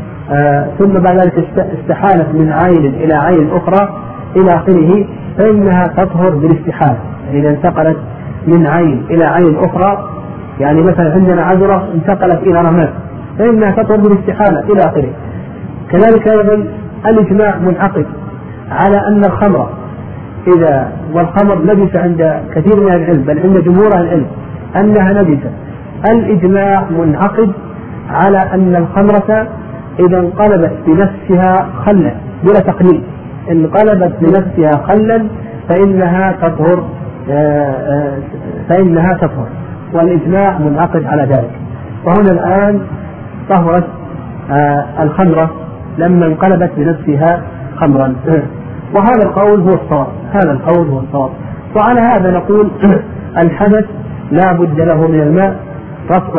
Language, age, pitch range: Arabic, 40-59, 150-195 Hz